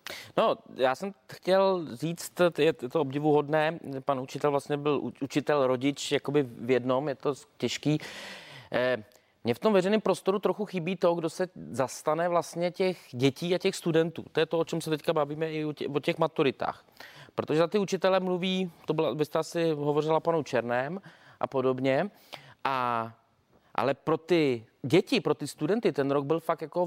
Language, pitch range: Czech, 130-170 Hz